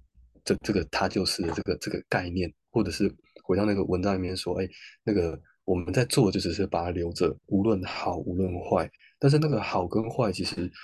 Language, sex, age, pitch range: Chinese, male, 20-39, 90-110 Hz